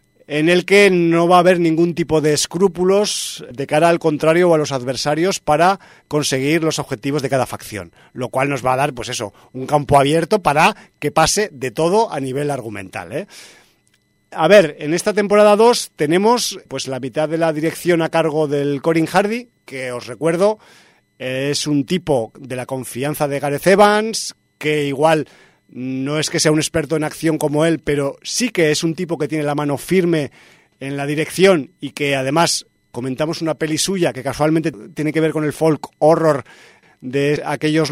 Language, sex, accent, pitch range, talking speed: Spanish, male, Spanish, 140-170 Hz, 190 wpm